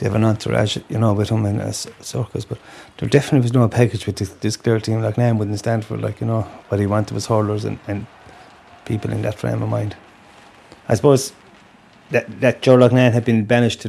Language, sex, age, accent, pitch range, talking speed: English, male, 30-49, Irish, 105-115 Hz, 230 wpm